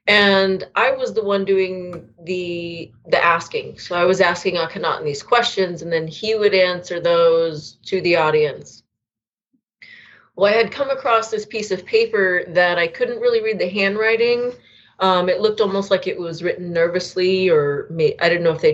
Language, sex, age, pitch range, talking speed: English, female, 30-49, 165-215 Hz, 185 wpm